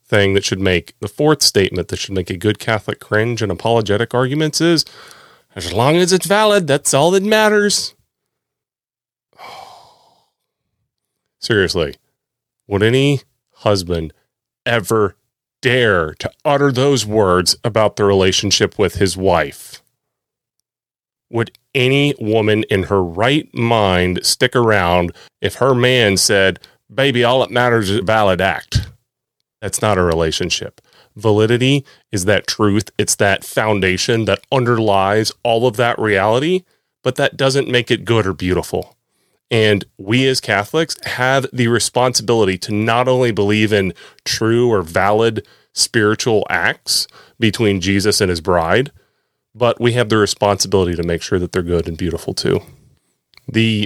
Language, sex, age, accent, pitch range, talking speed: English, male, 30-49, American, 100-125 Hz, 140 wpm